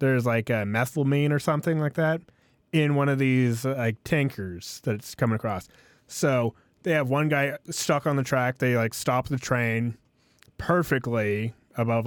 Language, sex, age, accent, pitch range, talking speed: English, male, 20-39, American, 110-135 Hz, 175 wpm